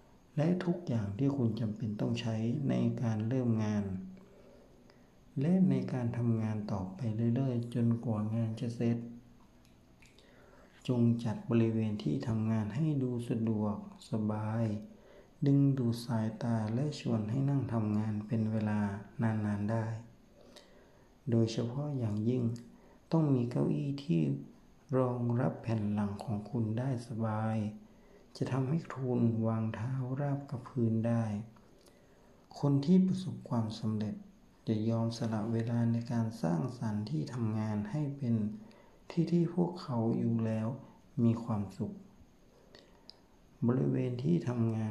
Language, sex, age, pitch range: Thai, male, 60-79, 110-130 Hz